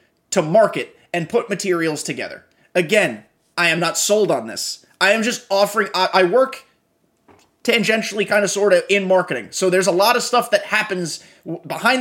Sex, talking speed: male, 180 wpm